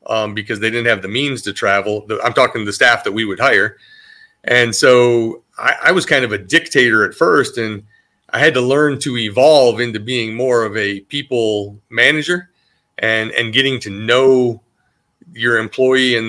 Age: 30-49